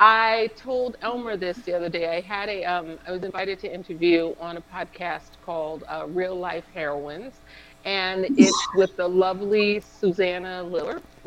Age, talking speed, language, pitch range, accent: 50-69, 165 wpm, English, 165-205 Hz, American